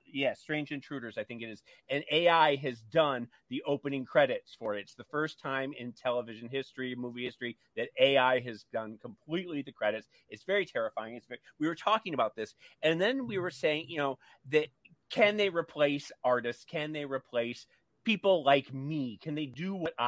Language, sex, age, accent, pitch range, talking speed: English, male, 40-59, American, 130-180 Hz, 185 wpm